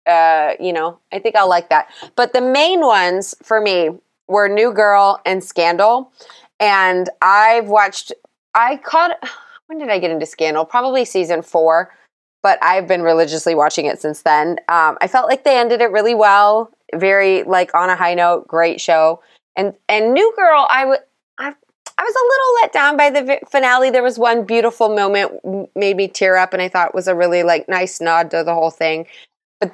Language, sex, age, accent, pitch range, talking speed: English, female, 20-39, American, 170-225 Hz, 200 wpm